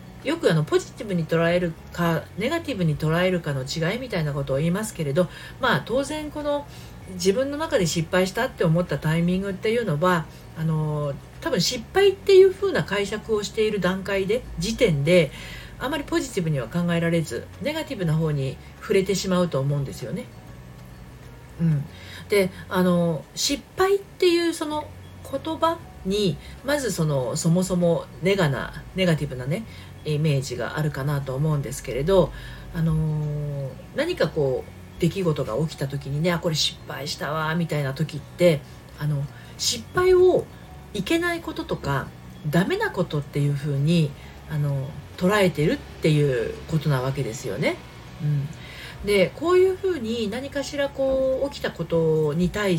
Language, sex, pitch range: Japanese, female, 150-205 Hz